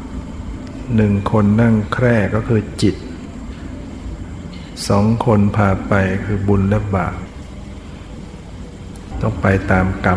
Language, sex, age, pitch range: Thai, male, 60-79, 90-105 Hz